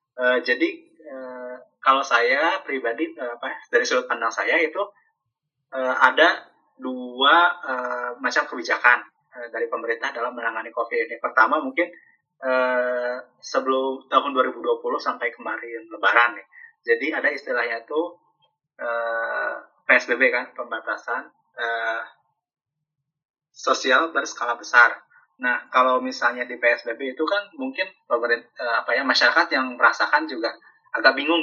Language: Indonesian